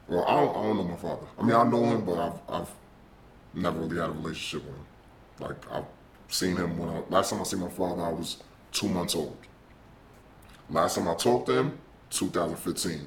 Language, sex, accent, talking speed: English, female, American, 215 wpm